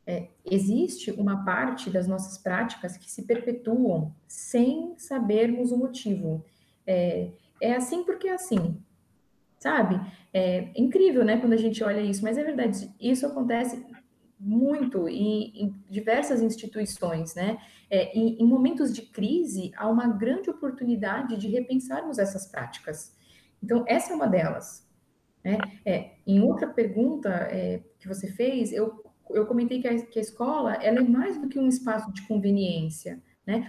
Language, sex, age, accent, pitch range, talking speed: Portuguese, female, 20-39, Brazilian, 200-245 Hz, 150 wpm